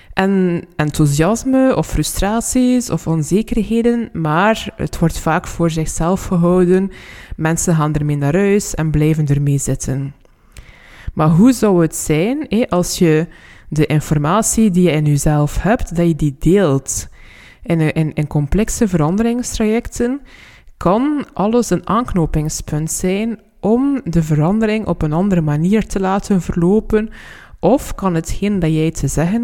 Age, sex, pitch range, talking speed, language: 20-39, female, 155-215 Hz, 135 wpm, Dutch